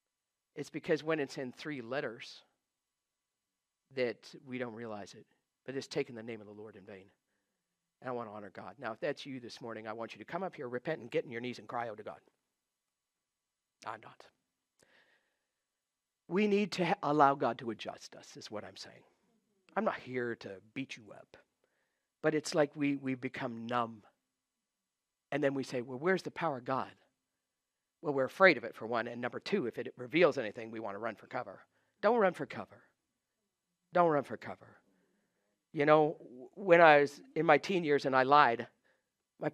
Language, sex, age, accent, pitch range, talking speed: English, male, 50-69, American, 120-180 Hz, 200 wpm